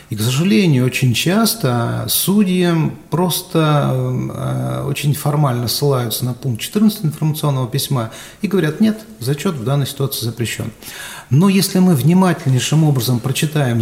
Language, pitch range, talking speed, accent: Russian, 125-155 Hz, 130 wpm, native